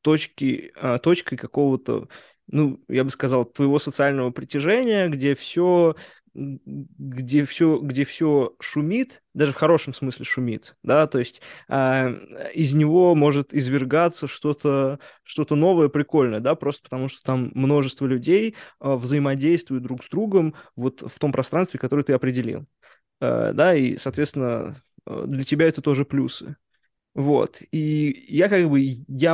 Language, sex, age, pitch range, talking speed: Russian, male, 20-39, 130-150 Hz, 125 wpm